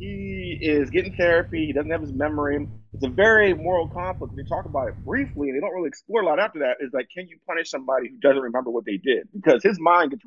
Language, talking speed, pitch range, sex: English, 255 wpm, 130-180 Hz, male